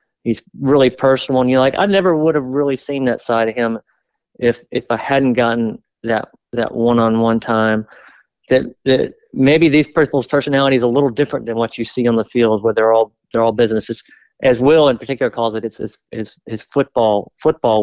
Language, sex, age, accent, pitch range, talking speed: English, male, 40-59, American, 115-150 Hz, 200 wpm